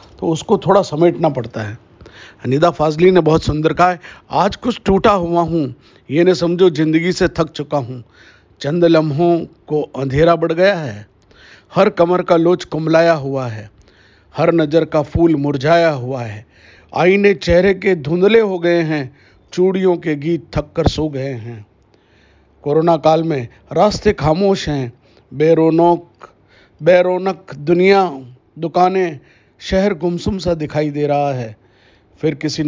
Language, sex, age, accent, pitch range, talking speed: Hindi, male, 50-69, native, 135-170 Hz, 145 wpm